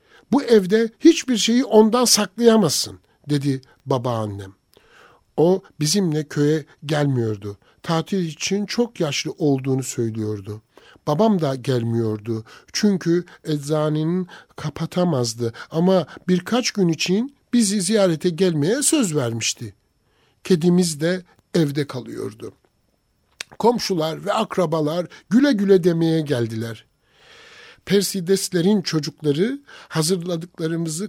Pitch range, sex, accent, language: 145-200 Hz, male, native, Turkish